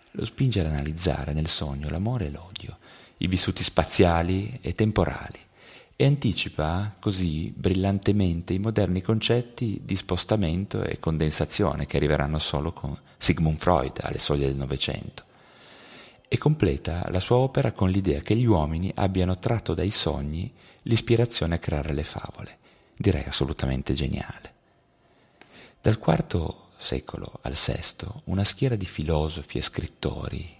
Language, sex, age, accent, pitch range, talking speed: Italian, male, 30-49, native, 75-105 Hz, 135 wpm